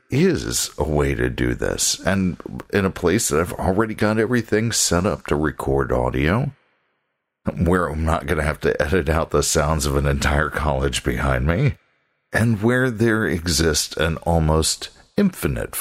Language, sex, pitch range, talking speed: English, male, 70-100 Hz, 165 wpm